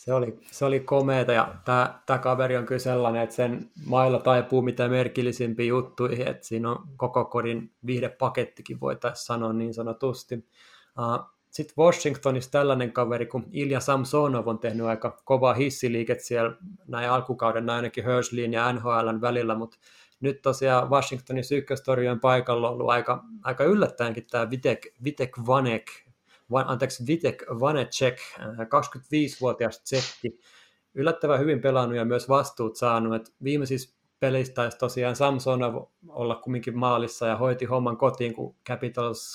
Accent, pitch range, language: native, 120-135 Hz, Finnish